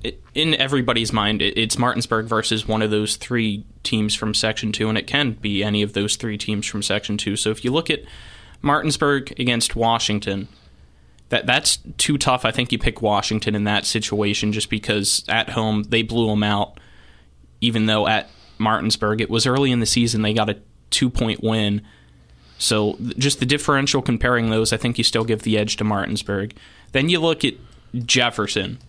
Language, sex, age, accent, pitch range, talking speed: English, male, 20-39, American, 105-120 Hz, 185 wpm